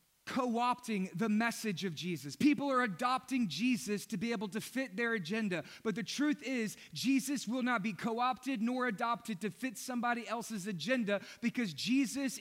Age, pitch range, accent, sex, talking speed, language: 30-49, 215-255 Hz, American, male, 165 wpm, English